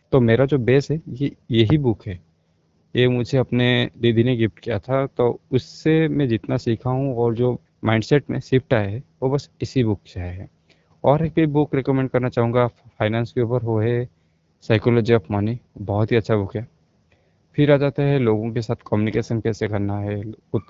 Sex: male